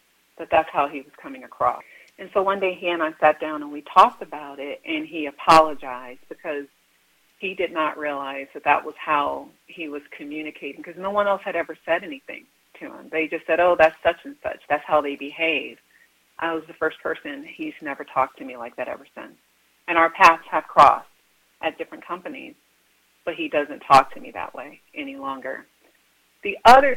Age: 40-59